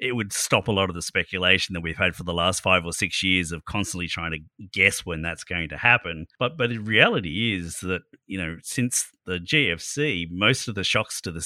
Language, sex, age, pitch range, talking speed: English, male, 30-49, 85-100 Hz, 235 wpm